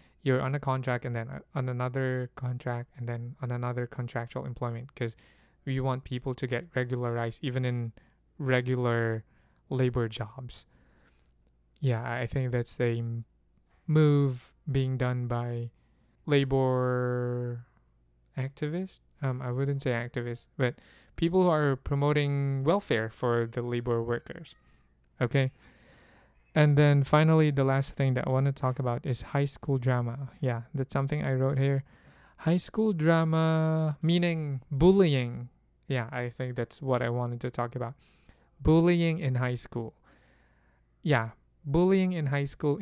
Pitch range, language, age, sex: 120-140 Hz, English, 20-39, male